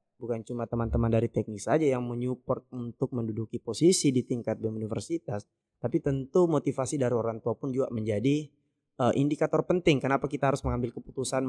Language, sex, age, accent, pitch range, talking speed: Indonesian, male, 20-39, native, 115-145 Hz, 160 wpm